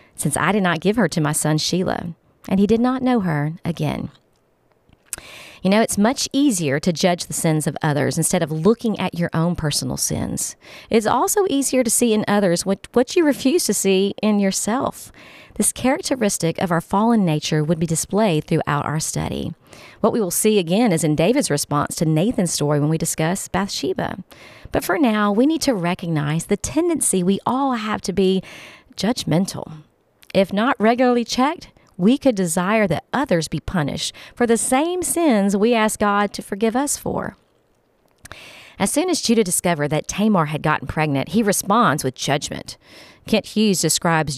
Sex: female